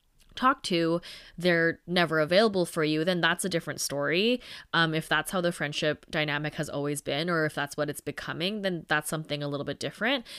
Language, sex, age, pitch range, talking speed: English, female, 20-39, 150-175 Hz, 200 wpm